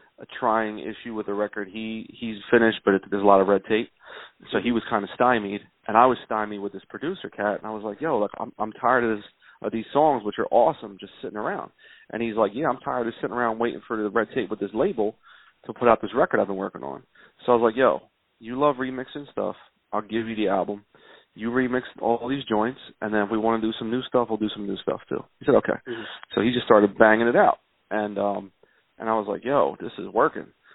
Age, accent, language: 30-49, American, English